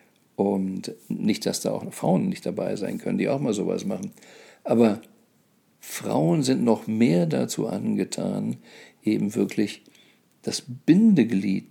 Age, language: 50-69, German